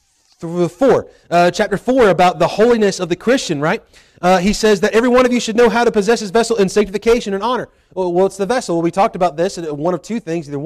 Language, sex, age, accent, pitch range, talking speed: English, male, 30-49, American, 160-225 Hz, 265 wpm